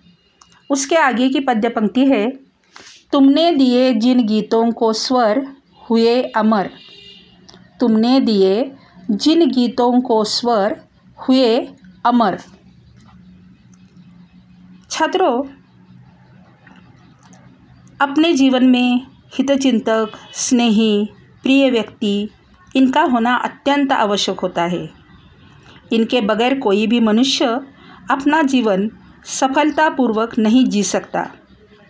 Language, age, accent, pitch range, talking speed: Marathi, 50-69, native, 210-270 Hz, 90 wpm